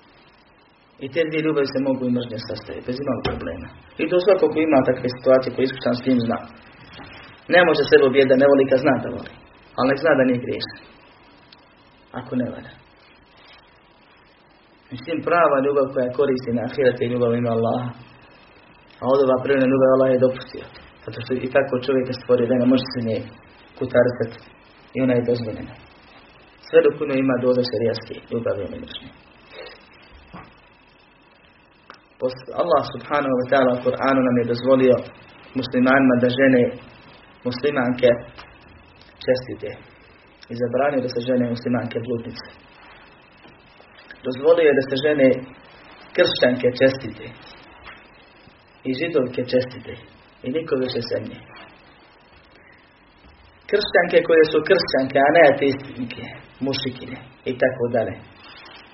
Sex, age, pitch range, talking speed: male, 30-49, 125-135 Hz, 125 wpm